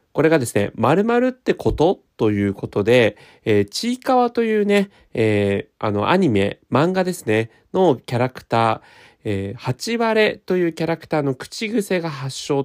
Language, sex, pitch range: Japanese, male, 110-170 Hz